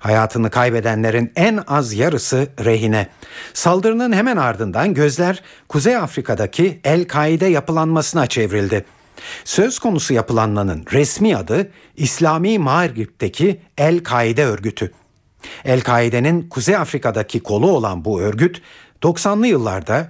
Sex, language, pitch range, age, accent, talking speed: male, Turkish, 115-165 Hz, 50-69, native, 100 wpm